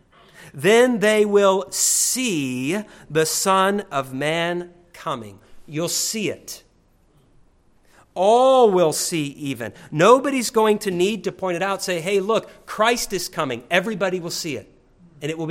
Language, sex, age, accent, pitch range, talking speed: English, male, 50-69, American, 140-190 Hz, 145 wpm